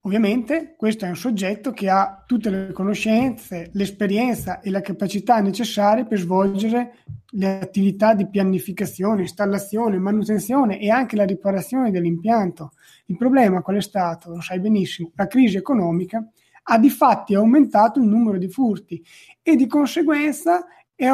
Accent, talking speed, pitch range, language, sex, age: native, 145 wpm, 195-250 Hz, Italian, male, 30-49